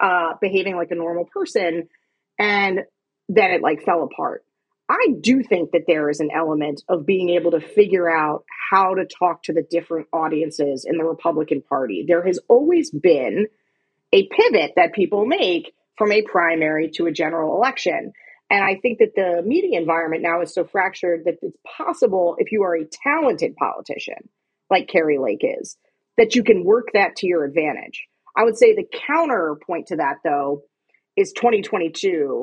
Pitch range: 170-245 Hz